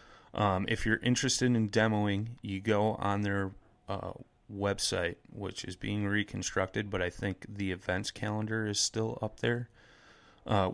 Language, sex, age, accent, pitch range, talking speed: English, male, 30-49, American, 95-110 Hz, 150 wpm